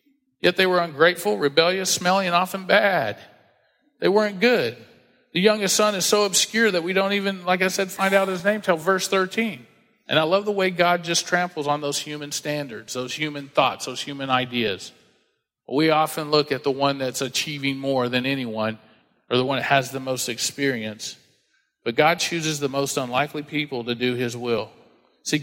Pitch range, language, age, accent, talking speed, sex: 140-185 Hz, English, 40-59, American, 190 wpm, male